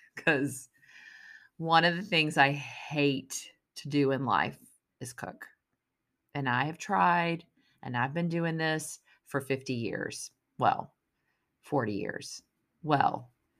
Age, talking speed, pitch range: 40-59, 130 wpm, 145-175 Hz